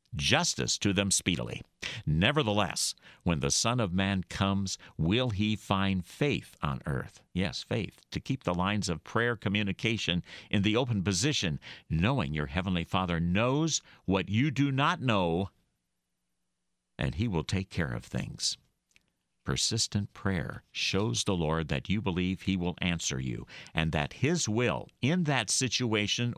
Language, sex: English, male